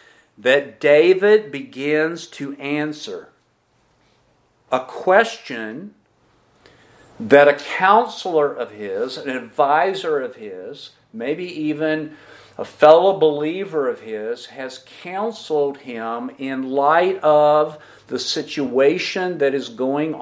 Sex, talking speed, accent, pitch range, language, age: male, 100 wpm, American, 130-175 Hz, English, 50-69